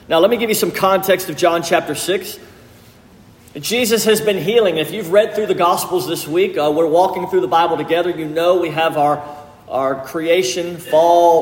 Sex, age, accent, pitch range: male, 40-59, American, 160-210 Hz